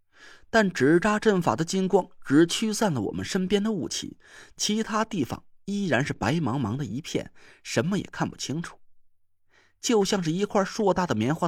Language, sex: Chinese, male